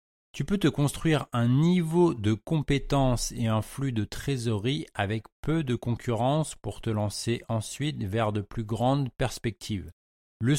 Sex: male